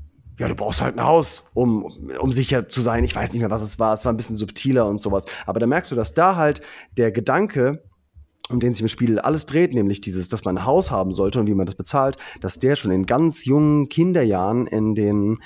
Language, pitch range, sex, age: German, 100-135 Hz, male, 30-49